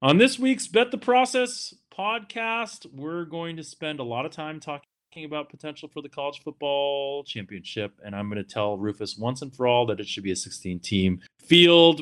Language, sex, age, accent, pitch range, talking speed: English, male, 30-49, American, 100-135 Hz, 205 wpm